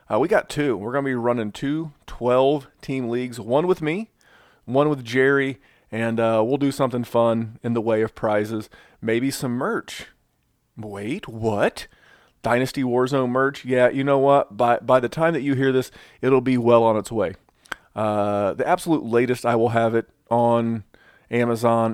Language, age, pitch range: English, 40-59, 110-130 Hz